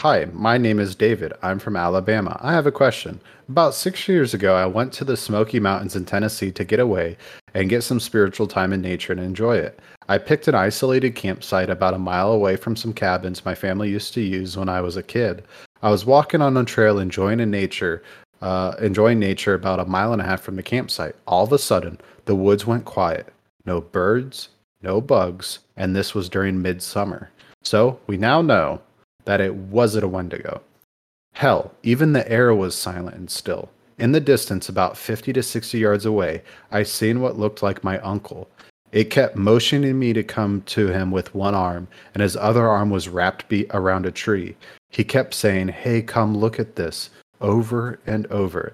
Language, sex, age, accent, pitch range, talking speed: English, male, 30-49, American, 95-115 Hz, 200 wpm